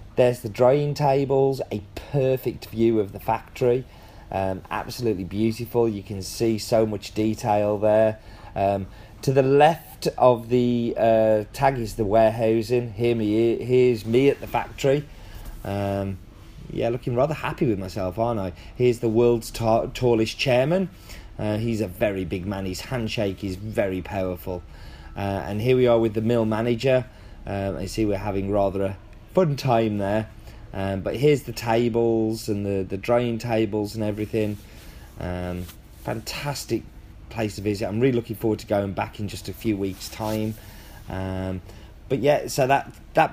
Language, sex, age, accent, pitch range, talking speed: English, male, 30-49, British, 100-120 Hz, 165 wpm